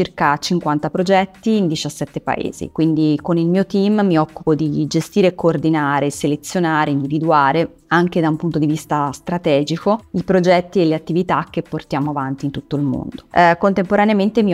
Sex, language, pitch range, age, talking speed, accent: female, Italian, 150-175 Hz, 30-49, 160 wpm, native